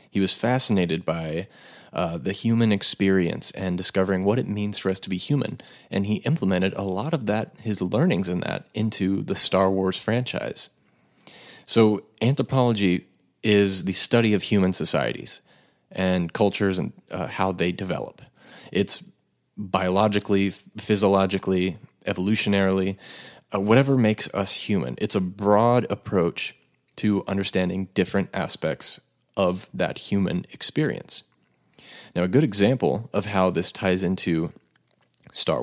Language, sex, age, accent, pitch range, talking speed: English, male, 30-49, American, 95-105 Hz, 135 wpm